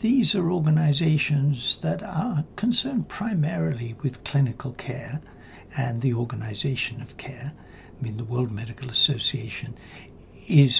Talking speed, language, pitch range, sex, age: 120 wpm, English, 120-150 Hz, male, 60-79